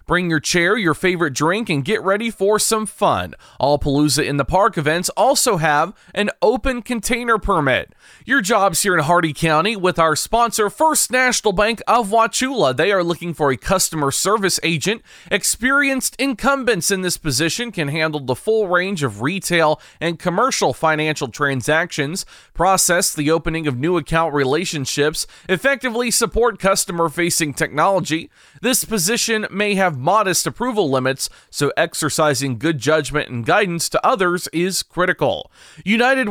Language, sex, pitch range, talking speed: English, male, 155-210 Hz, 150 wpm